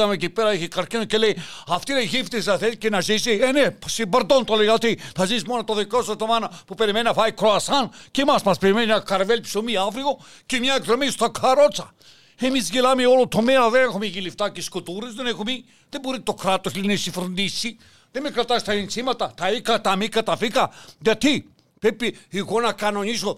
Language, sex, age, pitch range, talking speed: Greek, male, 60-79, 200-245 Hz, 100 wpm